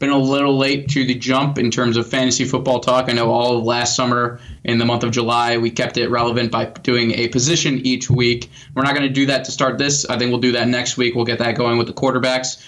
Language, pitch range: English, 120-135 Hz